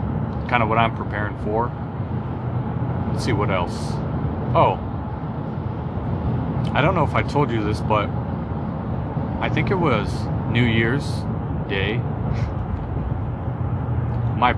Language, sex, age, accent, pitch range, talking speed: English, male, 30-49, American, 110-125 Hz, 115 wpm